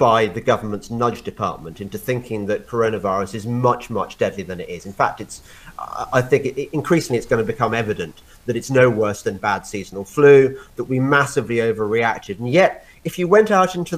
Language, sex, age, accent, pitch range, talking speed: English, male, 30-49, British, 115-155 Hz, 200 wpm